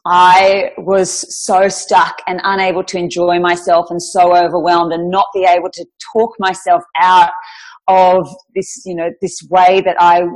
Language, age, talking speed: English, 30-49, 160 wpm